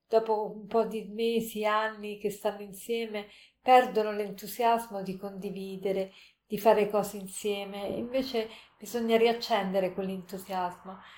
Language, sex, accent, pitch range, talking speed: Italian, female, native, 195-225 Hz, 115 wpm